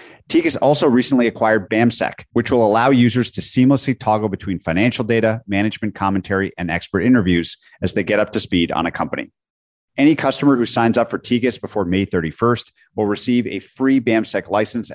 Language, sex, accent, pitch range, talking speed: English, male, American, 105-130 Hz, 180 wpm